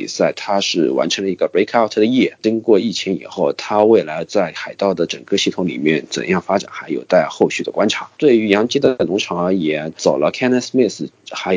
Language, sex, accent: Chinese, male, native